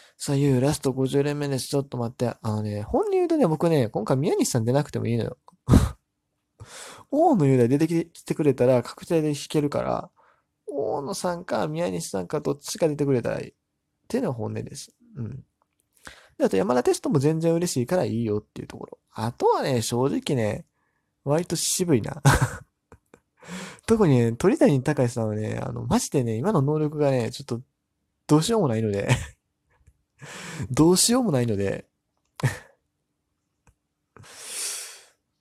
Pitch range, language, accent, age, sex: 115-160 Hz, Japanese, native, 20-39, male